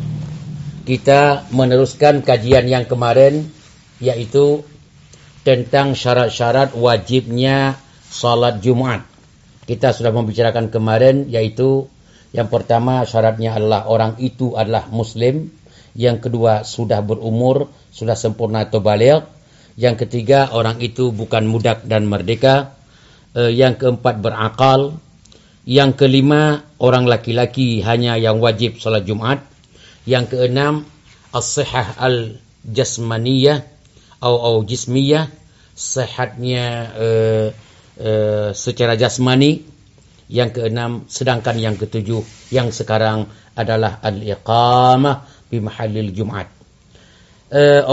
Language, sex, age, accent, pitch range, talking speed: Indonesian, male, 50-69, native, 110-135 Hz, 95 wpm